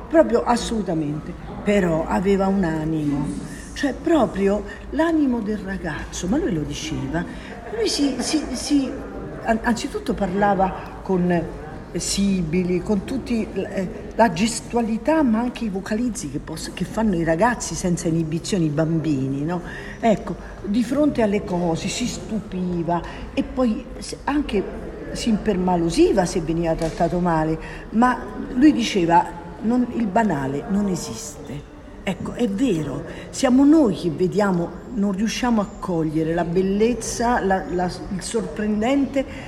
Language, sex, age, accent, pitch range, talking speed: Italian, female, 50-69, native, 165-235 Hz, 125 wpm